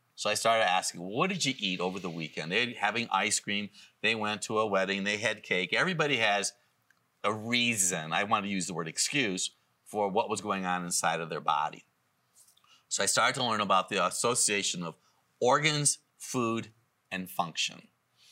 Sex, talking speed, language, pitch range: male, 185 wpm, English, 100-125 Hz